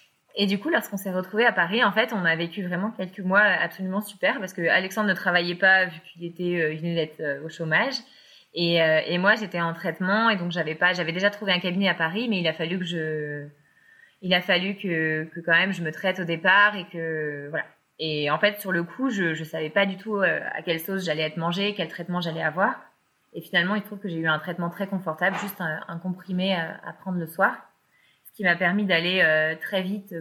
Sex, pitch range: female, 165-205 Hz